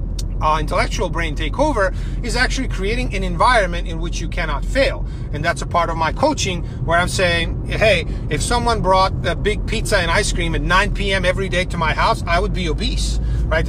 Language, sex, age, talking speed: English, male, 40-59, 210 wpm